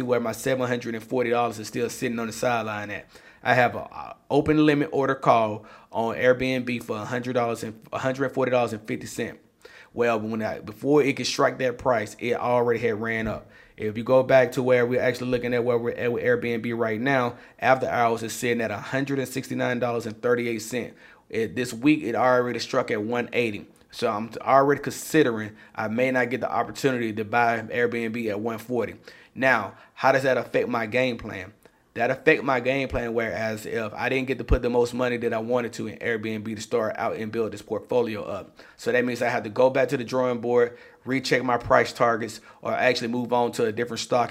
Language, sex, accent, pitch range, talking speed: English, male, American, 115-130 Hz, 195 wpm